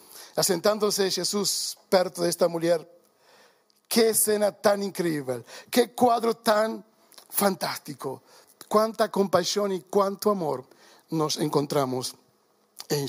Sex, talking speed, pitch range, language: male, 100 wpm, 200-245 Hz, Portuguese